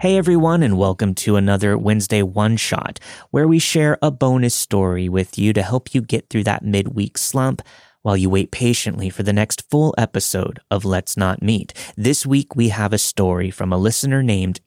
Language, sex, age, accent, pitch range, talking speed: English, male, 30-49, American, 100-135 Hz, 195 wpm